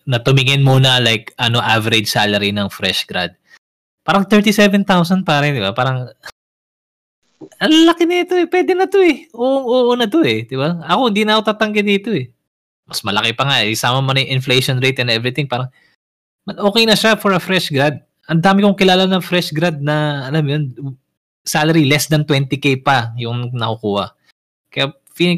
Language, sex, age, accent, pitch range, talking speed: Filipino, male, 20-39, native, 115-175 Hz, 185 wpm